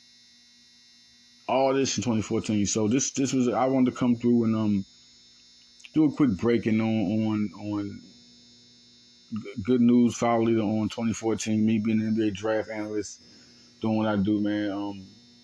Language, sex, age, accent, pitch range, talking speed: English, male, 20-39, American, 100-120 Hz, 155 wpm